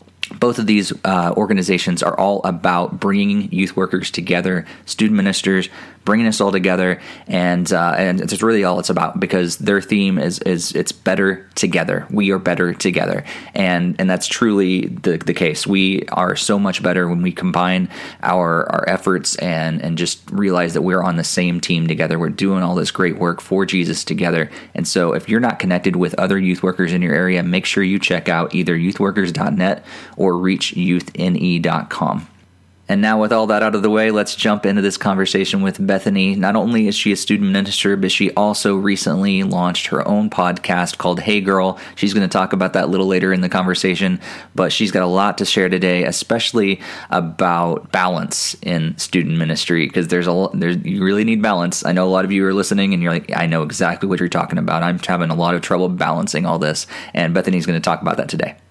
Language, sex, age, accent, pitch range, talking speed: English, male, 20-39, American, 90-100 Hz, 205 wpm